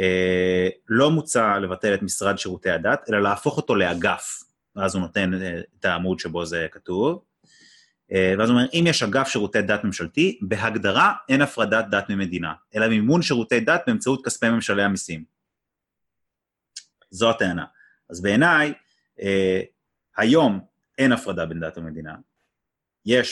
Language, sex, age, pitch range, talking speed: Hebrew, male, 30-49, 95-130 Hz, 145 wpm